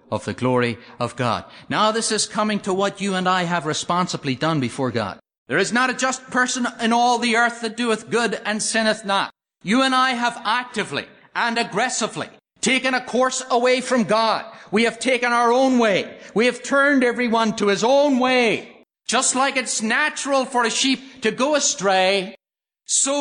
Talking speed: 190 wpm